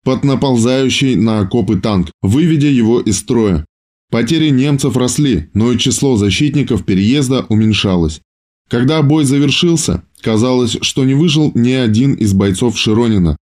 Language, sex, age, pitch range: Russian, male, 20-39, 105-140 Hz